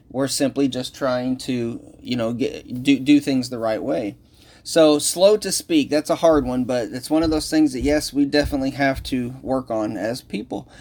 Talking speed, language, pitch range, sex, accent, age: 210 wpm, English, 125-160 Hz, male, American, 30-49